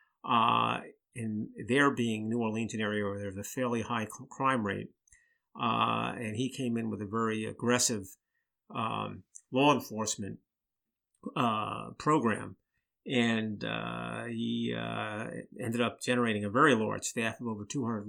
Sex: male